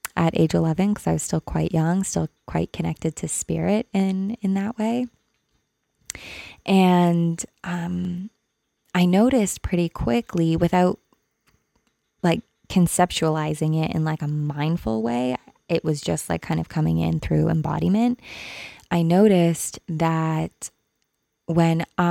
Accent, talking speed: American, 130 wpm